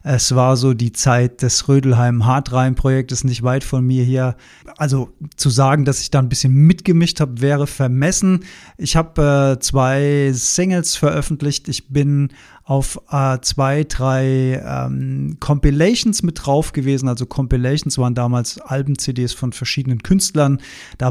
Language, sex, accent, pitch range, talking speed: German, male, German, 130-150 Hz, 150 wpm